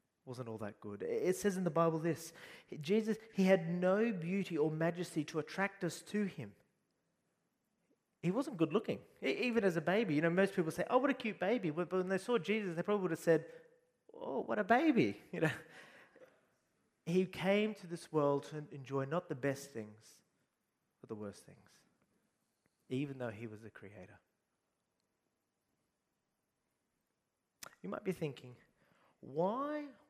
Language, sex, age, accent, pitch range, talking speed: English, male, 30-49, Australian, 150-195 Hz, 165 wpm